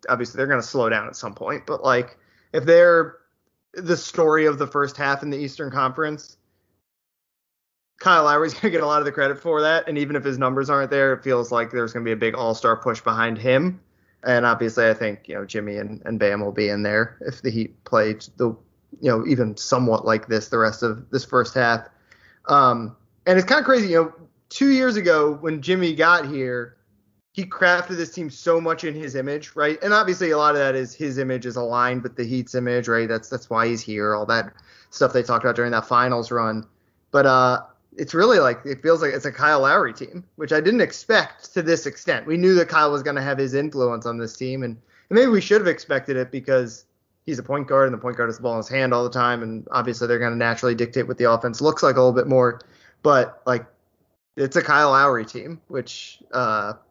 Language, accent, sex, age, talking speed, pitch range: English, American, male, 20-39, 240 wpm, 115-150 Hz